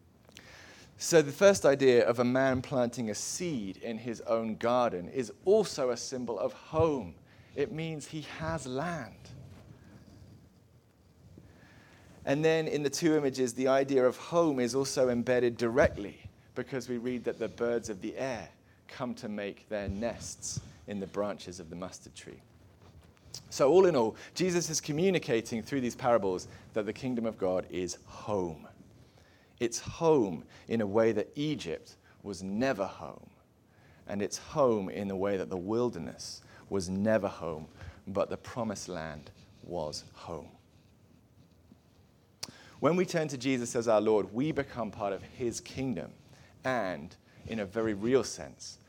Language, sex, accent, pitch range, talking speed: English, male, British, 100-130 Hz, 155 wpm